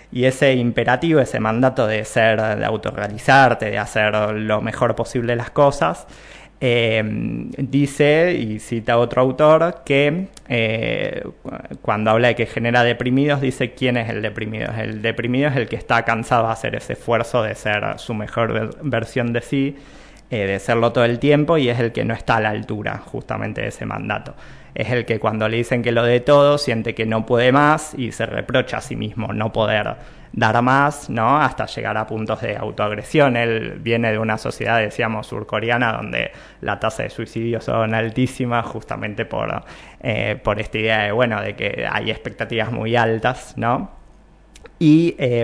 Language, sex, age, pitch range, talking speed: English, male, 20-39, 110-130 Hz, 175 wpm